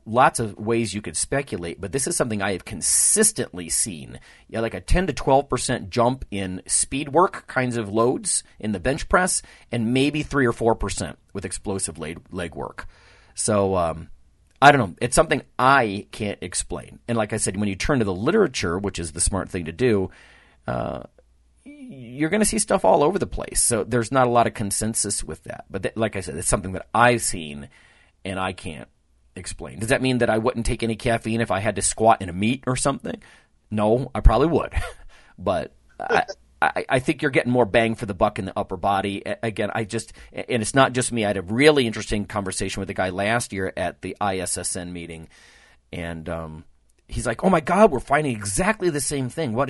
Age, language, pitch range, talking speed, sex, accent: 40-59, English, 95-125 Hz, 215 wpm, male, American